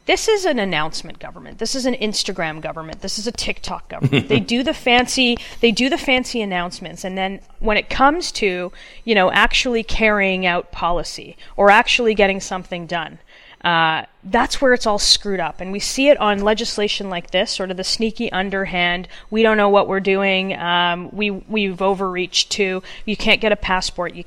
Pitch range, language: 180-215 Hz, English